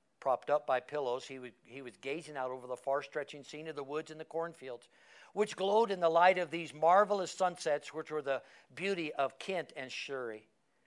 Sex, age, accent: male, 60-79, American